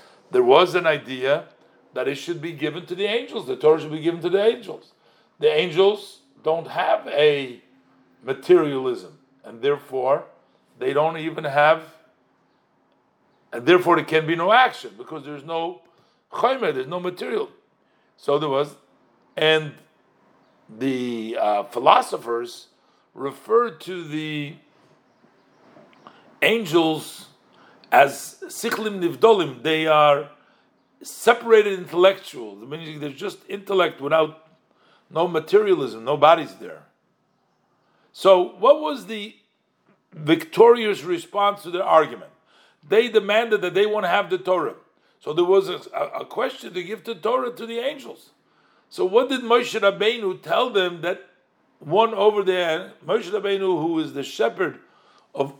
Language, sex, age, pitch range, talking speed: English, male, 50-69, 155-225 Hz, 135 wpm